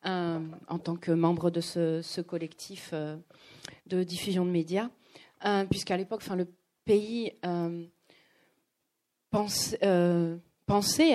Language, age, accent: French, 30-49, French